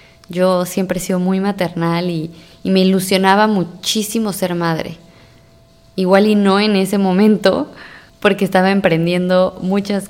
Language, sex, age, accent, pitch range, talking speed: Spanish, female, 20-39, Mexican, 165-195 Hz, 135 wpm